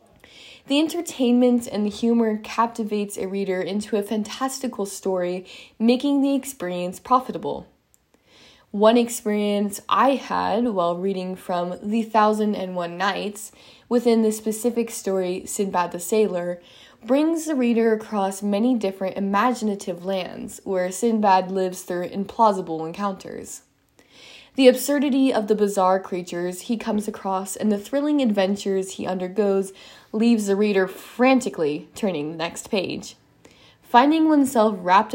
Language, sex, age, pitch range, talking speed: English, female, 20-39, 190-235 Hz, 130 wpm